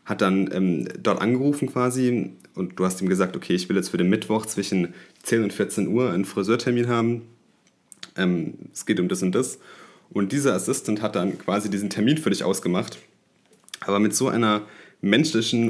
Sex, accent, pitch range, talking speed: male, German, 95-115 Hz, 185 wpm